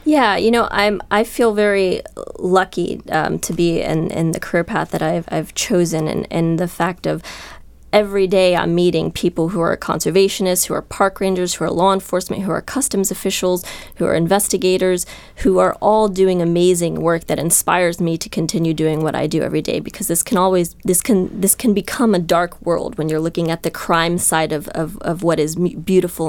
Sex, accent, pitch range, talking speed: female, American, 170-195 Hz, 205 wpm